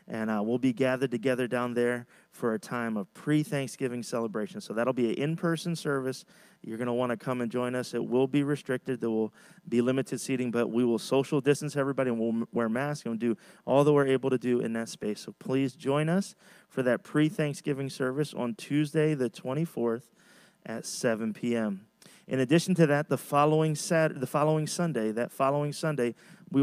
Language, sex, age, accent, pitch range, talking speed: English, male, 30-49, American, 120-150 Hz, 200 wpm